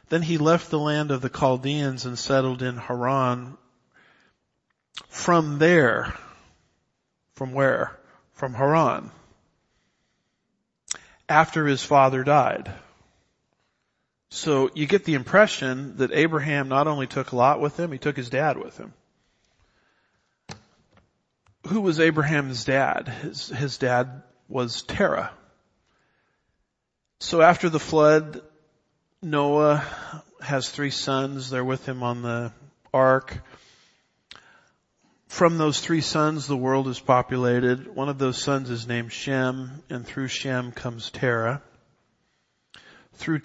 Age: 50-69